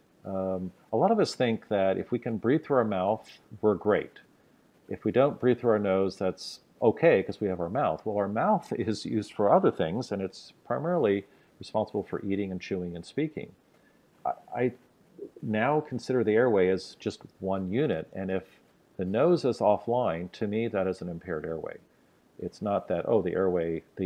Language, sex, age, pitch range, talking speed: English, male, 50-69, 85-110 Hz, 190 wpm